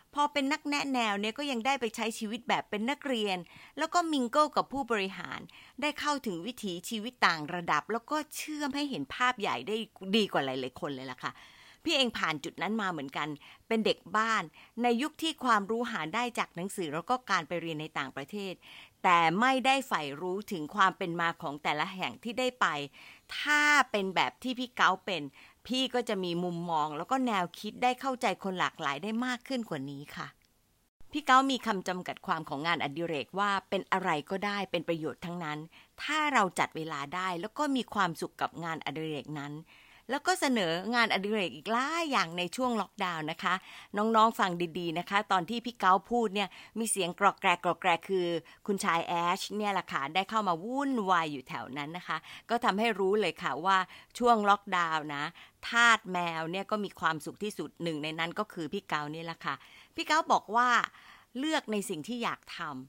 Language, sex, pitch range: Thai, female, 170-240 Hz